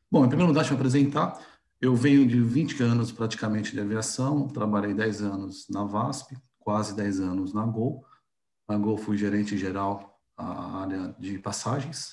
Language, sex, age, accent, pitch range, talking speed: Portuguese, male, 50-69, Brazilian, 105-130 Hz, 165 wpm